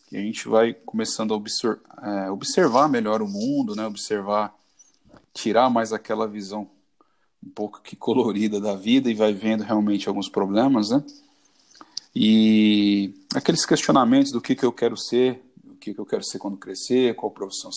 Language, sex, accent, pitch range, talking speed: Portuguese, male, Brazilian, 105-125 Hz, 170 wpm